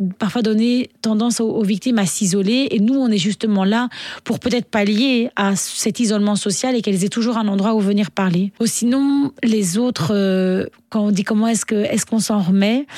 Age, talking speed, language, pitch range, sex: 30-49, 200 wpm, French, 205-245 Hz, female